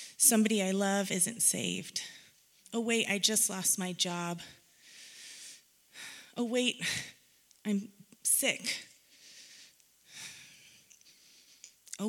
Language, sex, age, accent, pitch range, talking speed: English, female, 30-49, American, 170-220 Hz, 85 wpm